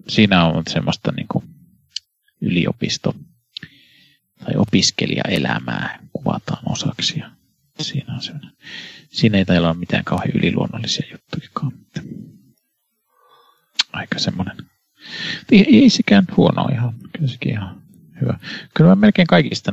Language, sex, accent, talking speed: Finnish, male, native, 105 wpm